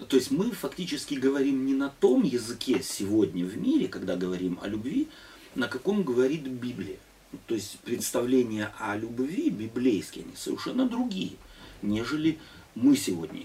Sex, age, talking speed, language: male, 40-59, 145 wpm, Russian